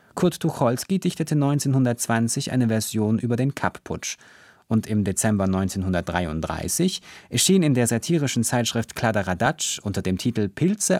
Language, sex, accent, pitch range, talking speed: German, male, German, 100-145 Hz, 125 wpm